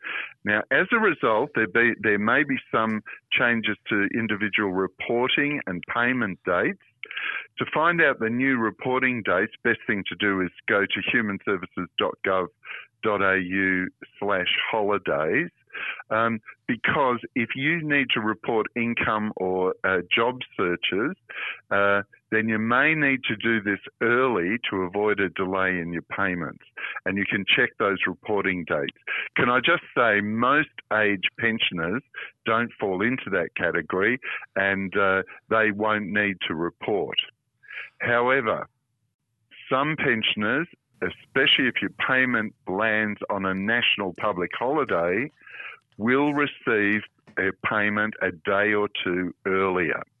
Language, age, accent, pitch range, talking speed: English, 50-69, Australian, 100-120 Hz, 130 wpm